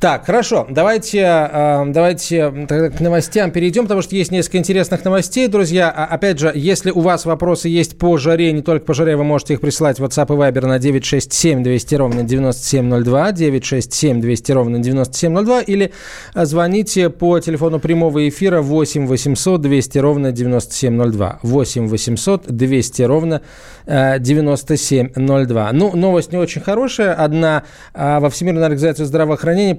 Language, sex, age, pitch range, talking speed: Russian, male, 20-39, 130-170 Hz, 140 wpm